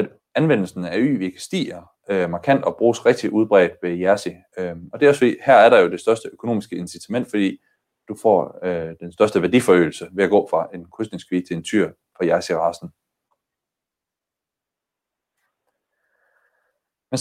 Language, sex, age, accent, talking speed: Danish, male, 30-49, native, 155 wpm